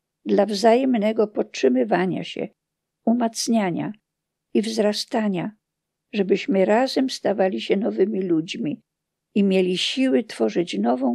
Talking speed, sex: 95 wpm, female